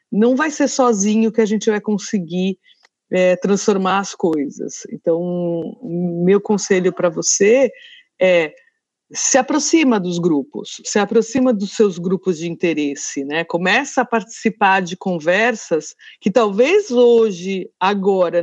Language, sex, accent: Portuguese, female, Brazilian